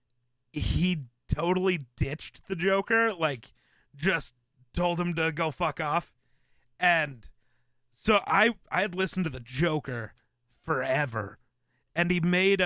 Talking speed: 125 wpm